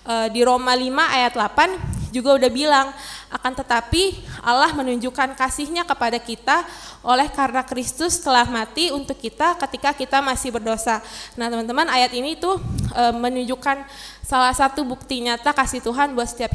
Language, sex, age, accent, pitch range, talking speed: Indonesian, female, 20-39, native, 240-290 Hz, 145 wpm